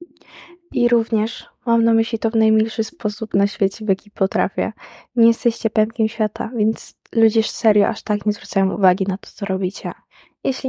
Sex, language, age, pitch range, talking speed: female, Polish, 20-39, 190-225 Hz, 180 wpm